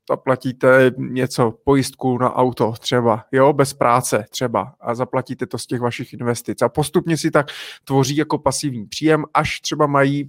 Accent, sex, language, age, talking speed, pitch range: native, male, Czech, 30-49, 165 wpm, 130-150 Hz